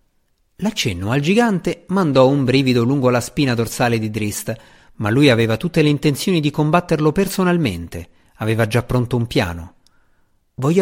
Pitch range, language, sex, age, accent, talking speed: 110-150 Hz, Italian, male, 50-69, native, 150 wpm